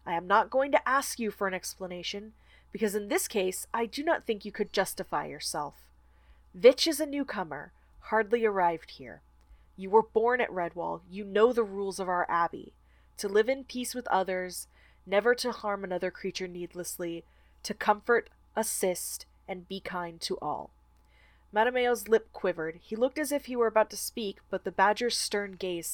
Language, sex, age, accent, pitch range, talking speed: English, female, 20-39, American, 175-225 Hz, 180 wpm